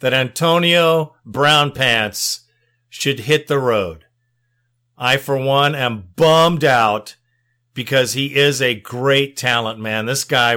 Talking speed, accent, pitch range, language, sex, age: 130 wpm, American, 130-175 Hz, English, male, 50-69